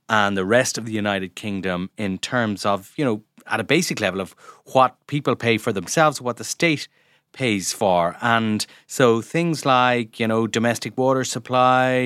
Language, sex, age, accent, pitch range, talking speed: English, male, 30-49, Irish, 105-130 Hz, 180 wpm